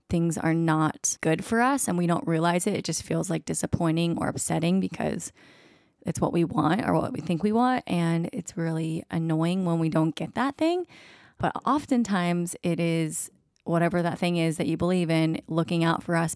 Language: English